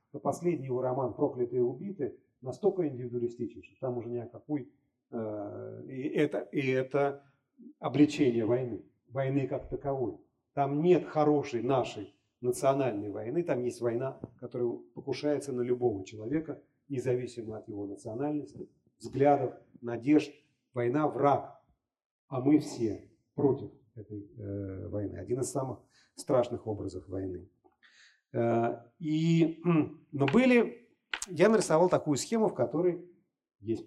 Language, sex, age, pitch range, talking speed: Russian, male, 40-59, 120-155 Hz, 120 wpm